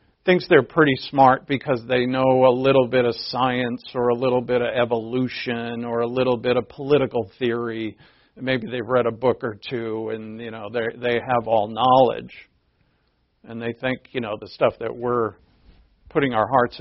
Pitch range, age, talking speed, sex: 90-135 Hz, 50-69, 180 wpm, male